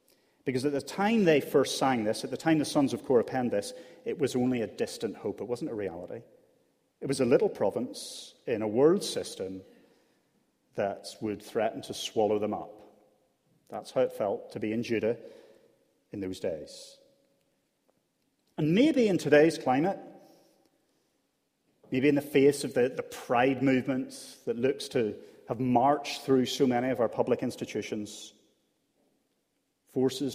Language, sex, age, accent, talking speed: English, male, 40-59, British, 160 wpm